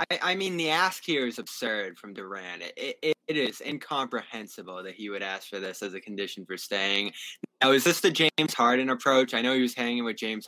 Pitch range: 110-165 Hz